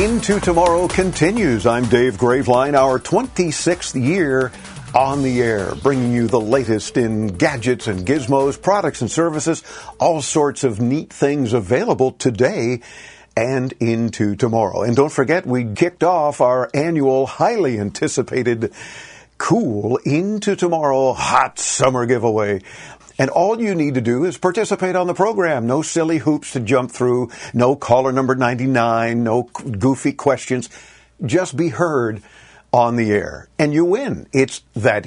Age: 50-69